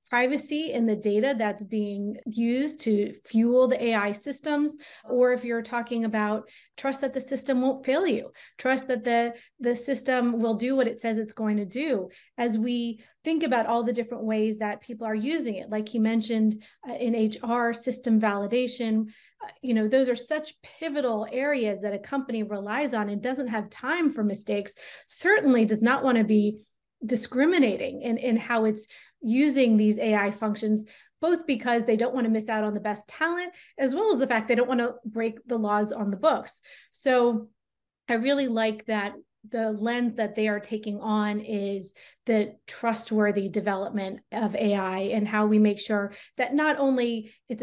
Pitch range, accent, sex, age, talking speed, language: 215-255 Hz, American, female, 30-49, 185 wpm, English